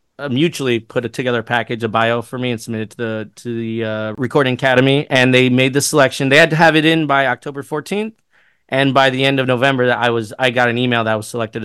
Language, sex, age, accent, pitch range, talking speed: English, male, 30-49, American, 120-145 Hz, 260 wpm